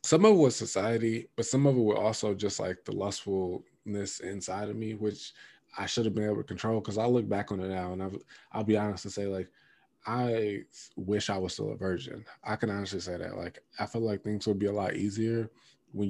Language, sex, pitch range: English, male, 95-110 Hz